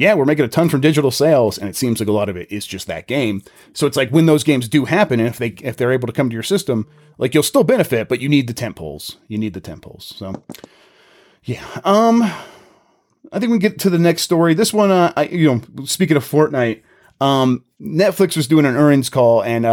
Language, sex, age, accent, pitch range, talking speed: English, male, 30-49, American, 120-155 Hz, 240 wpm